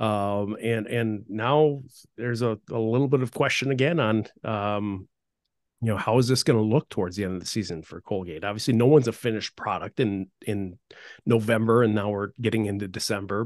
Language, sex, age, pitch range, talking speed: English, male, 40-59, 100-120 Hz, 200 wpm